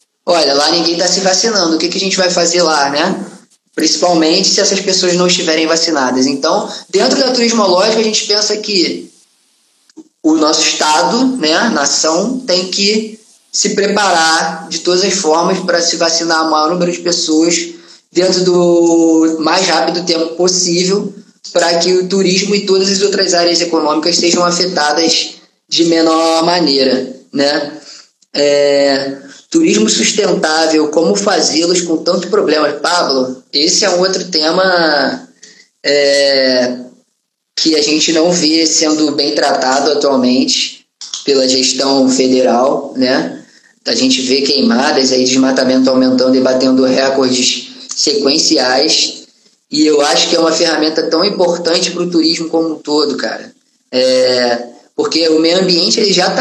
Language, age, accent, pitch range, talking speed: Portuguese, 20-39, Brazilian, 150-185 Hz, 145 wpm